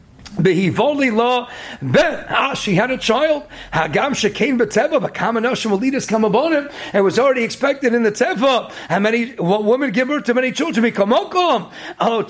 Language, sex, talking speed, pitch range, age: English, male, 195 wpm, 220-295 Hz, 40-59